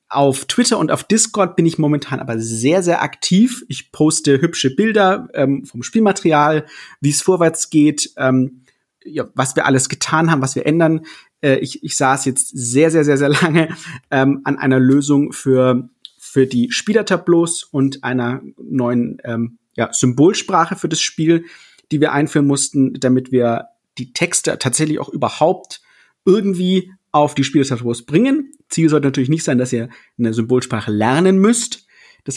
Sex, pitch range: male, 130-170 Hz